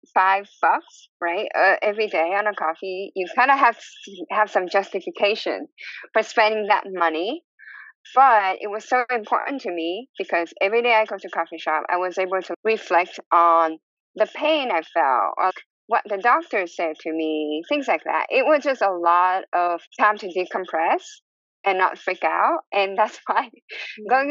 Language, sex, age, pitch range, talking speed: English, female, 10-29, 185-245 Hz, 180 wpm